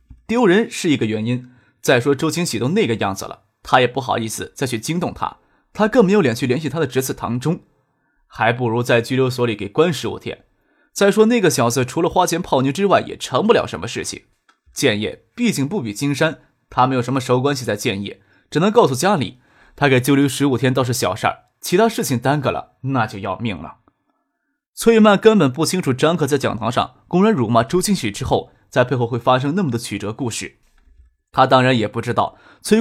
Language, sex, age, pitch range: Chinese, male, 20-39, 120-175 Hz